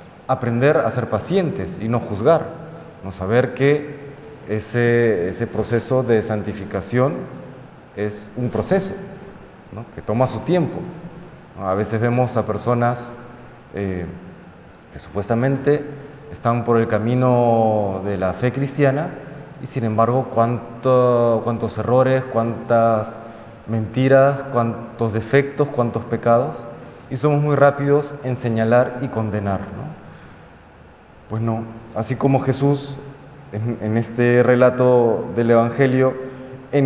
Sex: male